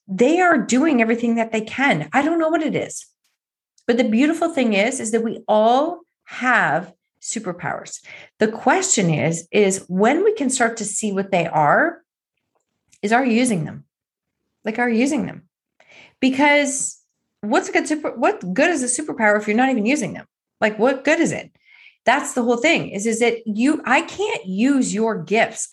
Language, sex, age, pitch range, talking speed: English, female, 30-49, 220-300 Hz, 190 wpm